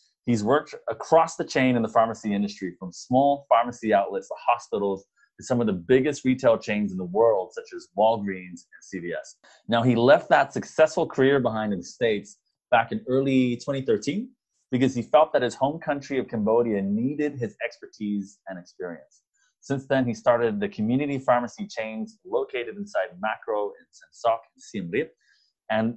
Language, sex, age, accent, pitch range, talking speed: English, male, 30-49, American, 100-165 Hz, 165 wpm